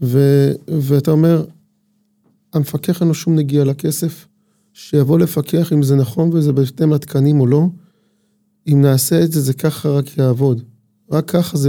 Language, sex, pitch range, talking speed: Hebrew, male, 150-195 Hz, 155 wpm